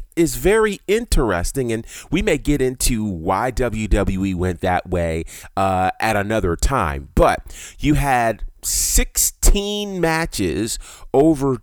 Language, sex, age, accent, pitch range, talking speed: English, male, 30-49, American, 95-130 Hz, 120 wpm